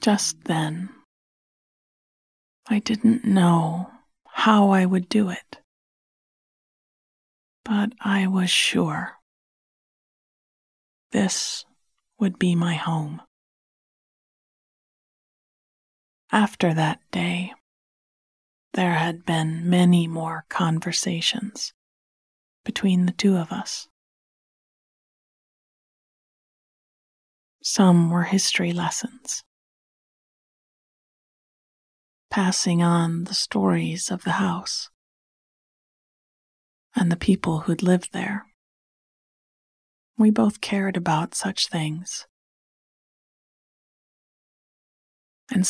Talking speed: 75 wpm